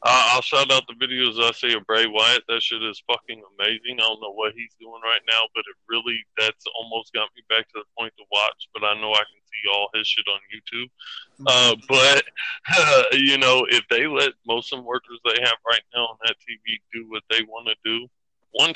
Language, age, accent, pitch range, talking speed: English, 20-39, American, 110-125 Hz, 235 wpm